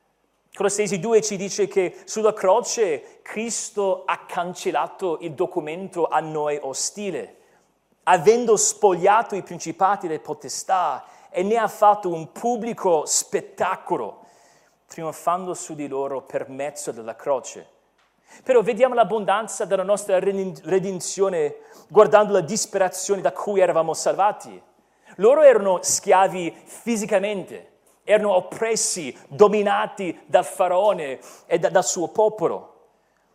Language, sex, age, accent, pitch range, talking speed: Italian, male, 40-59, native, 170-215 Hz, 115 wpm